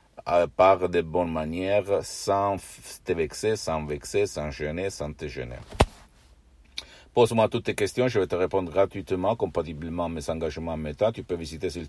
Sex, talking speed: male, 165 wpm